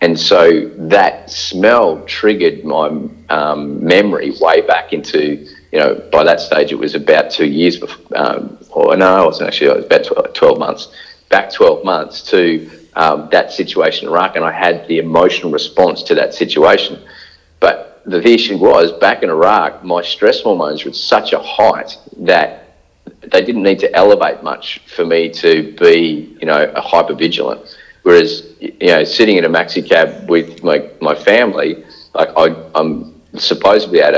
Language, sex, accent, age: English, male, Australian, 40-59